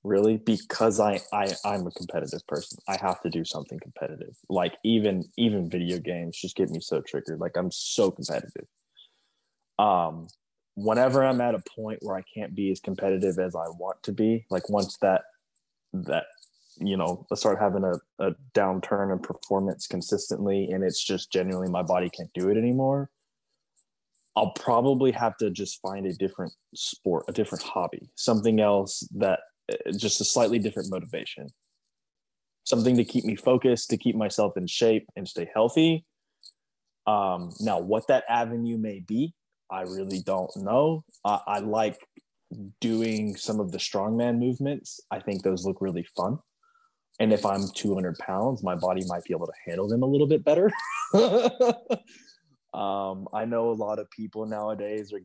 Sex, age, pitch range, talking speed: male, 20-39, 95-120 Hz, 170 wpm